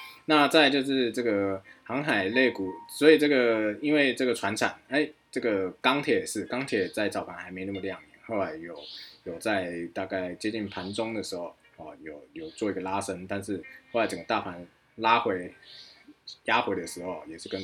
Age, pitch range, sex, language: 20-39, 95-125 Hz, male, Chinese